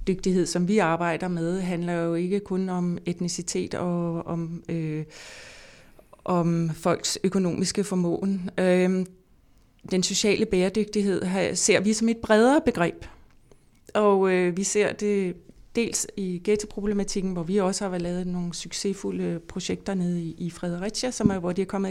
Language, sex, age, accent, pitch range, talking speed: Danish, female, 30-49, native, 180-215 Hz, 150 wpm